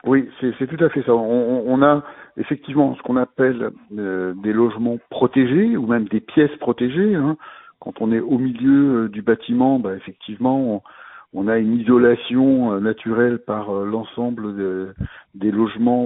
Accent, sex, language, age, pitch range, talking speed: French, male, French, 60-79, 110-130 Hz, 175 wpm